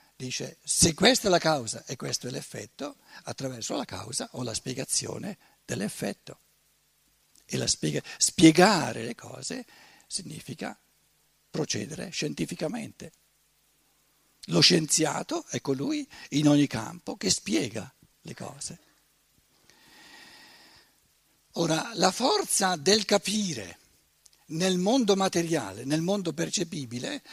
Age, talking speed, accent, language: 60-79, 100 wpm, native, Italian